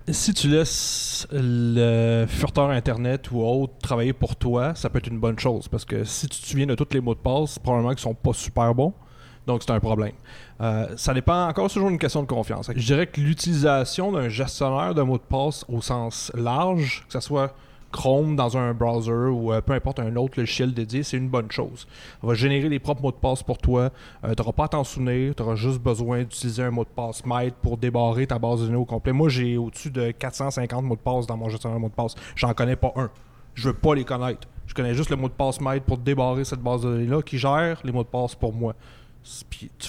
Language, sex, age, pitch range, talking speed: French, male, 30-49, 120-140 Hz, 250 wpm